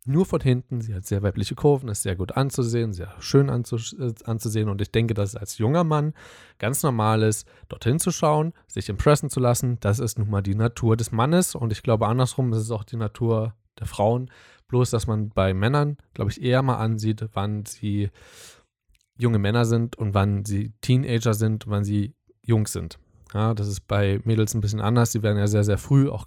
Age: 20-39